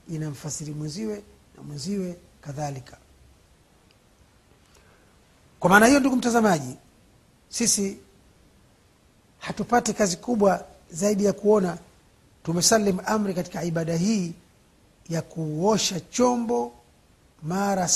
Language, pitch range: Swahili, 140-200 Hz